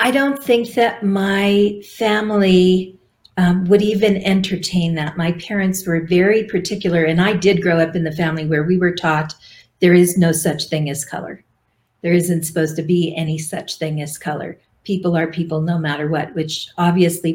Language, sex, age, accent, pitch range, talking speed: English, female, 50-69, American, 155-185 Hz, 185 wpm